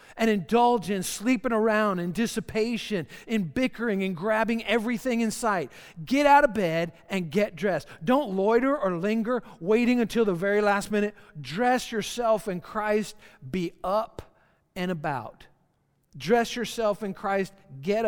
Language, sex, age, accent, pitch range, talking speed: English, male, 50-69, American, 170-225 Hz, 145 wpm